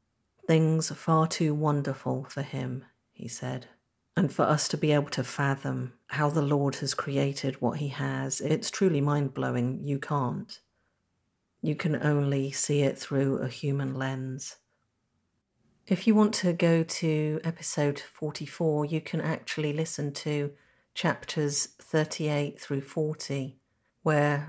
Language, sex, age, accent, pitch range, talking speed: English, female, 50-69, British, 135-155 Hz, 140 wpm